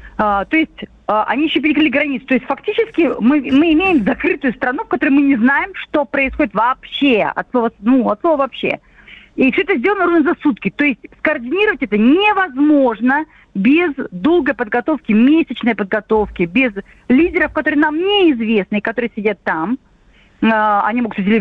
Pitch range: 230-315 Hz